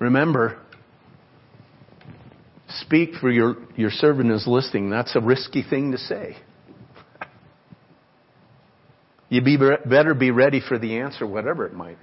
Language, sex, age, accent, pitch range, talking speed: English, male, 50-69, American, 120-150 Hz, 120 wpm